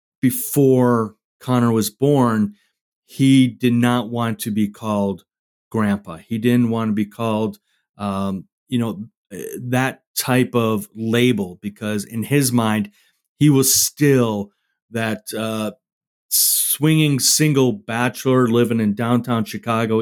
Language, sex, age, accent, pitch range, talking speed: English, male, 40-59, American, 105-130 Hz, 125 wpm